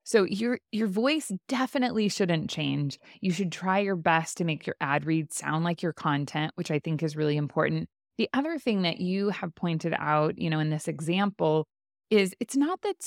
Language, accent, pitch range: English, American, 165-220 Hz